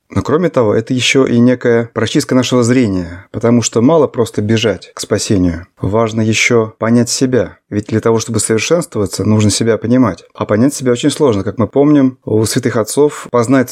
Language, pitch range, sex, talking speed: Russian, 105-130 Hz, male, 180 wpm